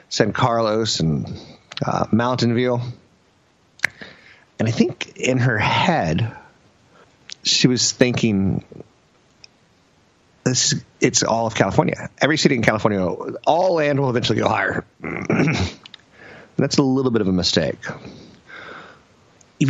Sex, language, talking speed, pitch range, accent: male, English, 115 wpm, 100-130 Hz, American